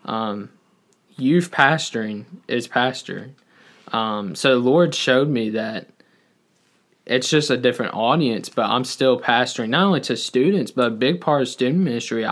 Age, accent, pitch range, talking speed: 20-39, American, 120-145 Hz, 155 wpm